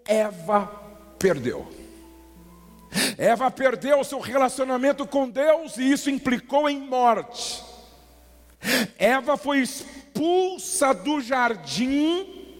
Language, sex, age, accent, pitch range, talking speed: English, male, 50-69, Brazilian, 195-285 Hz, 90 wpm